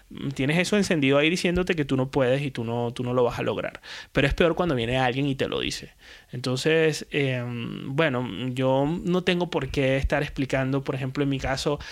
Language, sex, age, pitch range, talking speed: Spanish, male, 20-39, 140-175 Hz, 215 wpm